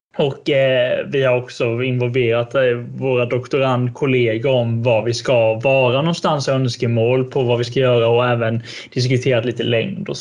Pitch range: 125-145 Hz